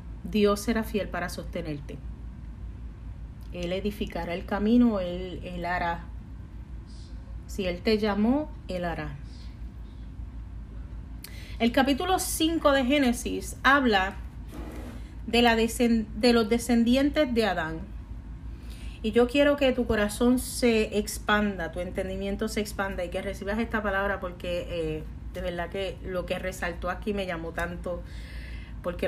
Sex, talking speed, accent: female, 125 wpm, American